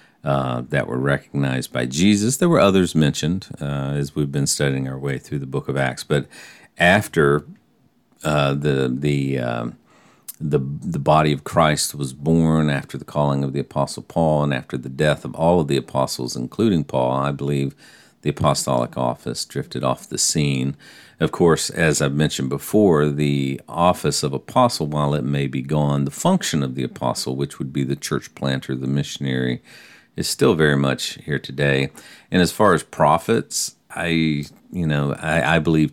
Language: English